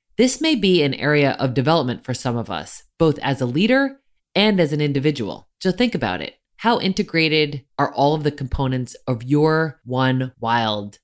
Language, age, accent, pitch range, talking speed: English, 20-39, American, 130-190 Hz, 185 wpm